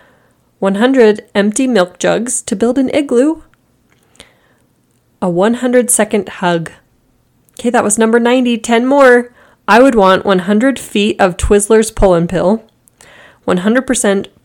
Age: 20-39